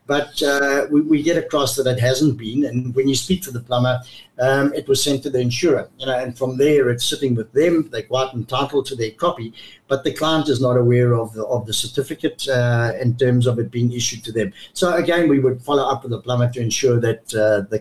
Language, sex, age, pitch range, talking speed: English, male, 60-79, 120-145 Hz, 235 wpm